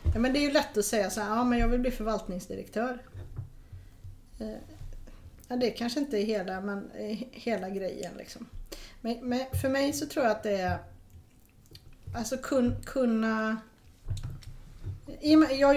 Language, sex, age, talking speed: Swedish, female, 40-59, 150 wpm